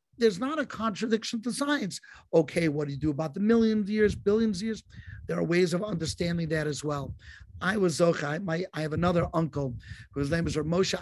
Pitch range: 155-215 Hz